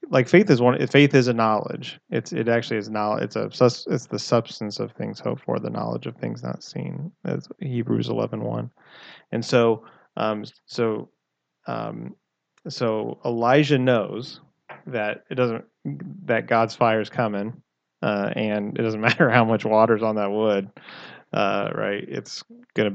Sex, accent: male, American